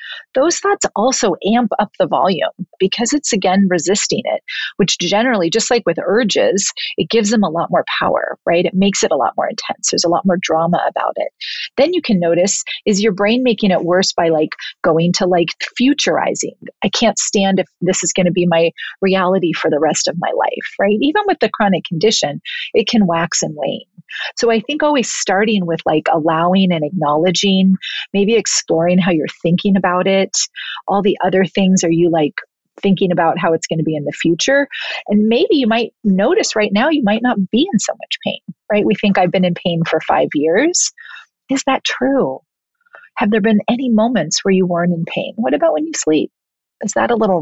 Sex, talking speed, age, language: female, 210 wpm, 40-59, English